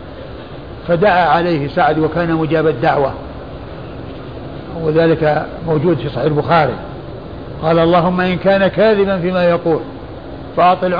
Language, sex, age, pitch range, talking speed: Arabic, male, 60-79, 160-200 Hz, 105 wpm